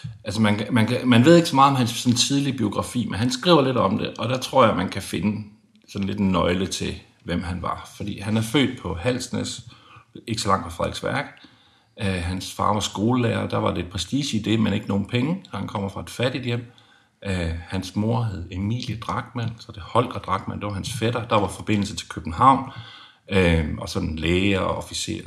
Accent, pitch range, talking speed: native, 100-125 Hz, 210 wpm